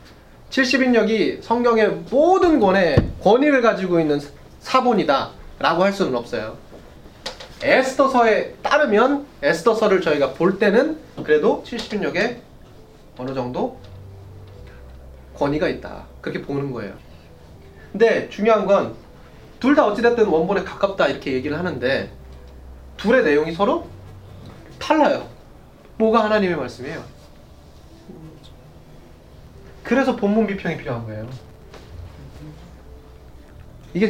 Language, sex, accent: Korean, male, native